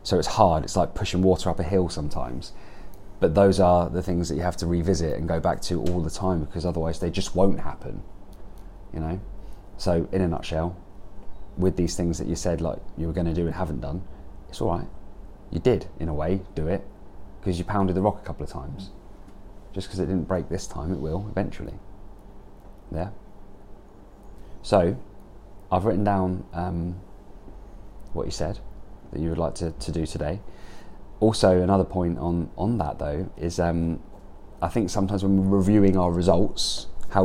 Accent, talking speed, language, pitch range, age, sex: British, 190 wpm, English, 85-100 Hz, 30-49, male